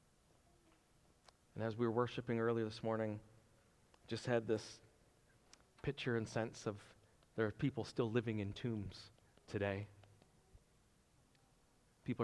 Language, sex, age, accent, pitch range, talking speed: English, male, 40-59, American, 110-125 Hz, 120 wpm